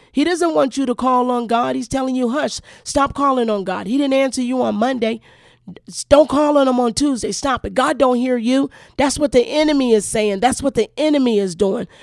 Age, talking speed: 40-59, 230 wpm